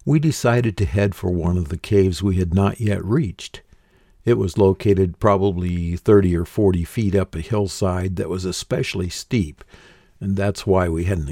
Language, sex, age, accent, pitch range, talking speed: English, male, 60-79, American, 90-110 Hz, 180 wpm